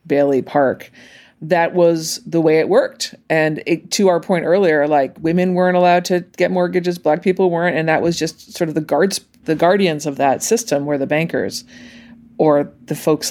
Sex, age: female, 40-59